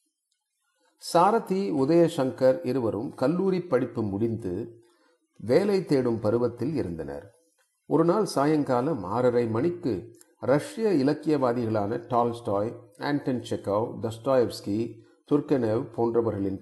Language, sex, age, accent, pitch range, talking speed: Tamil, male, 40-59, native, 115-170 Hz, 85 wpm